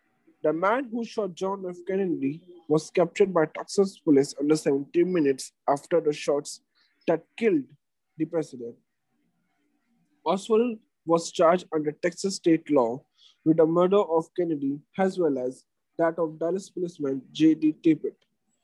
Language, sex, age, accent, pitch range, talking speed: English, male, 20-39, Indian, 145-190 Hz, 140 wpm